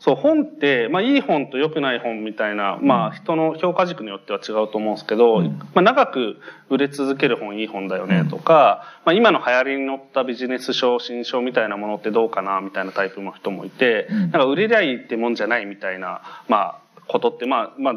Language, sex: Japanese, male